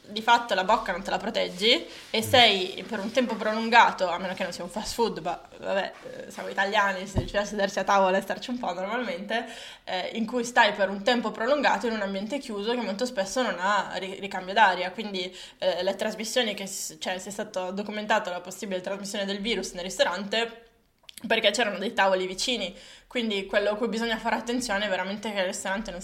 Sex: female